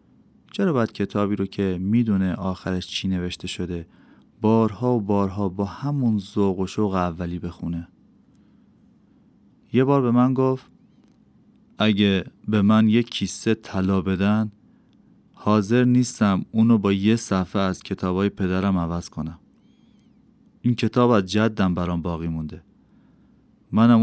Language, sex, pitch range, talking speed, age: Persian, male, 95-115 Hz, 125 wpm, 30-49